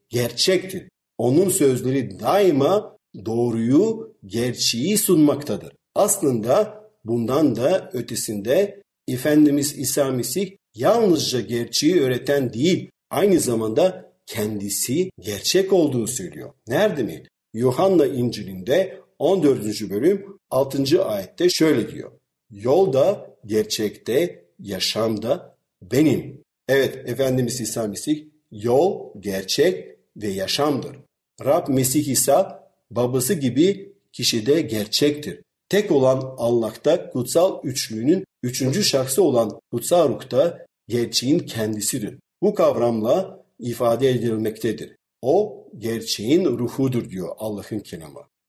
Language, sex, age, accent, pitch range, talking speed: Turkish, male, 50-69, native, 115-150 Hz, 95 wpm